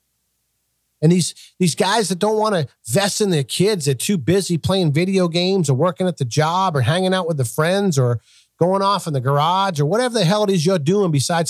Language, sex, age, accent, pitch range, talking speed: English, male, 40-59, American, 135-195 Hz, 230 wpm